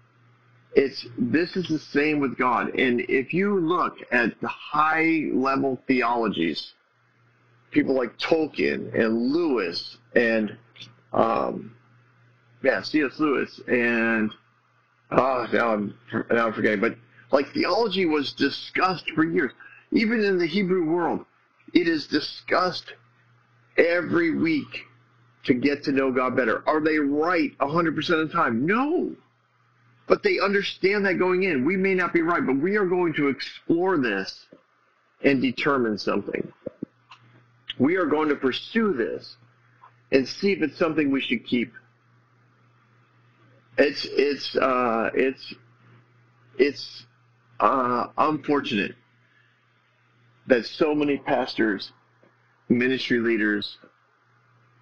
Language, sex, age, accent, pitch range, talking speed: English, male, 50-69, American, 120-180 Hz, 120 wpm